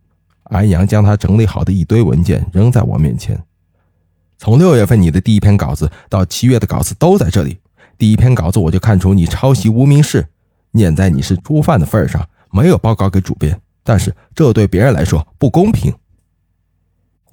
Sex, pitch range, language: male, 90-125 Hz, Chinese